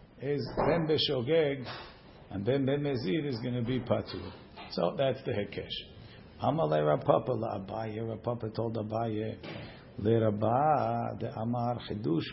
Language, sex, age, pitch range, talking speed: English, male, 50-69, 110-120 Hz, 75 wpm